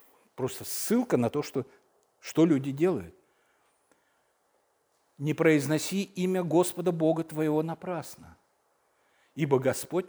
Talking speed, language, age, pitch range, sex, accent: 100 wpm, Russian, 50-69, 125-165 Hz, male, native